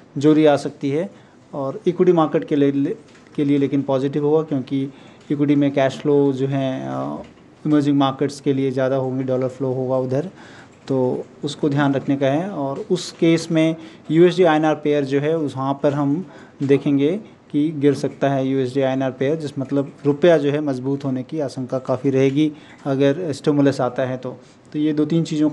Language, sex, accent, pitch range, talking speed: Hindi, male, native, 135-155 Hz, 190 wpm